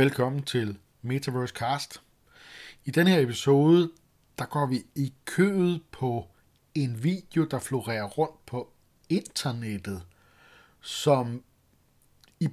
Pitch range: 115-145 Hz